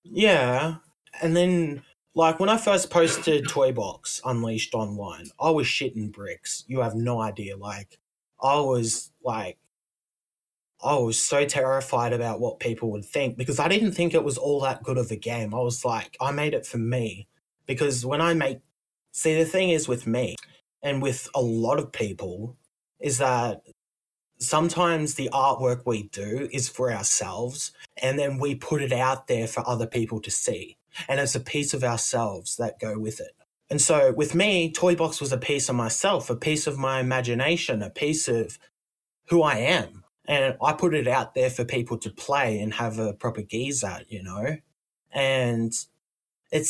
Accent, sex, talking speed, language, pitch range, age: Australian, male, 180 wpm, English, 115-150 Hz, 20-39